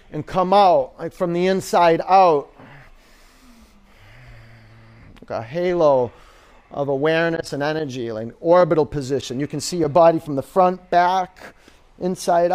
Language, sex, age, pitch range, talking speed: English, male, 40-59, 135-185 Hz, 135 wpm